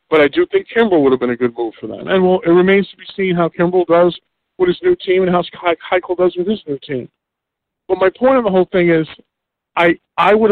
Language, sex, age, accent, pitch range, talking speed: English, male, 50-69, American, 145-185 Hz, 260 wpm